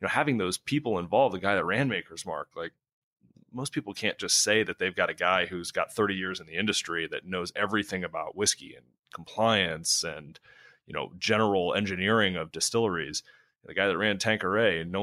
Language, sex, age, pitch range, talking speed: English, male, 30-49, 85-100 Hz, 200 wpm